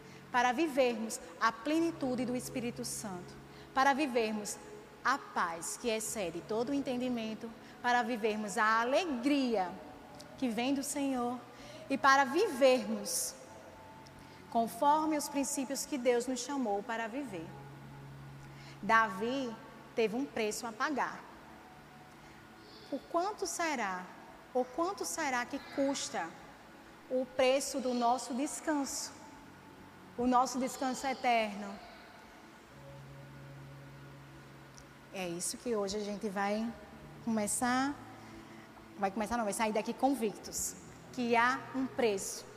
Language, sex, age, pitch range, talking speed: Portuguese, female, 20-39, 215-275 Hz, 110 wpm